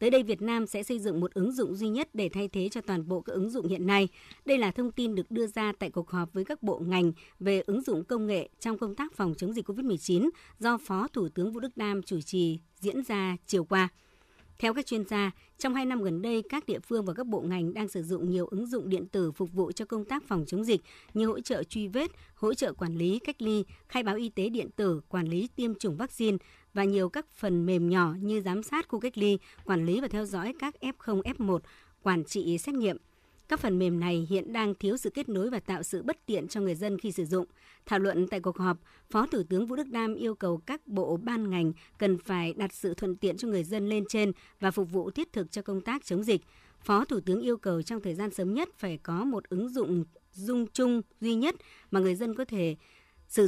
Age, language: 60-79, Vietnamese